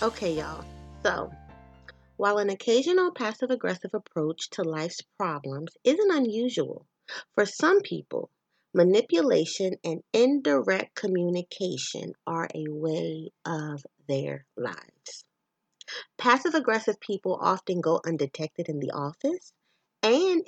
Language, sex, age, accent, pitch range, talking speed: English, female, 30-49, American, 160-225 Hz, 105 wpm